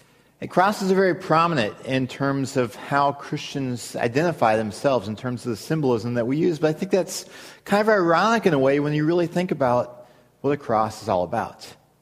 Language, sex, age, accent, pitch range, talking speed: English, male, 30-49, American, 125-160 Hz, 200 wpm